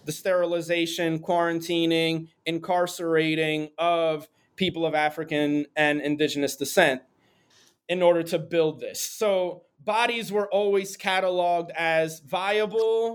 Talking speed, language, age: 105 wpm, English, 30-49